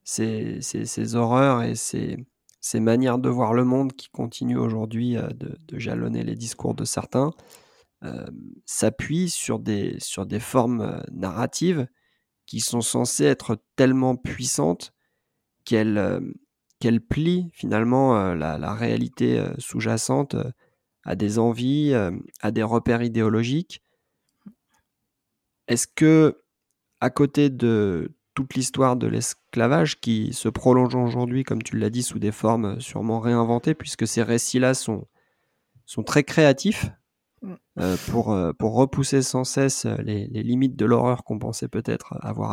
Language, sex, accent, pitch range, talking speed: French, male, French, 110-135 Hz, 135 wpm